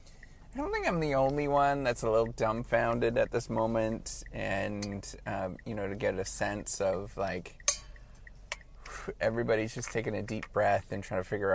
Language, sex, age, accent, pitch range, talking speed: English, male, 30-49, American, 95-125 Hz, 175 wpm